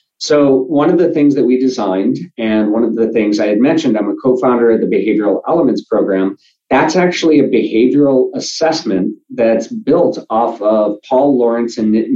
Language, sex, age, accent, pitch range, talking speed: English, male, 40-59, American, 110-140 Hz, 180 wpm